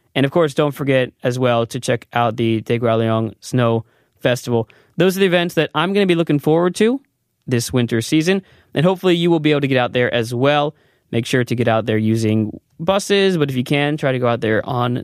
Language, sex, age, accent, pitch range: Korean, male, 20-39, American, 120-150 Hz